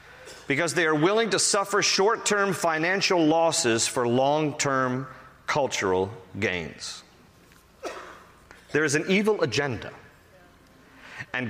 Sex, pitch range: male, 120-170 Hz